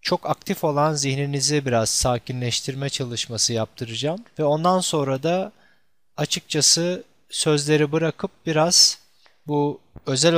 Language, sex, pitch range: Turkish, male, 135-165 Hz